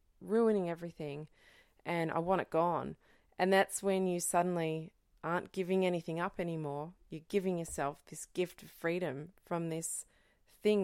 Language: English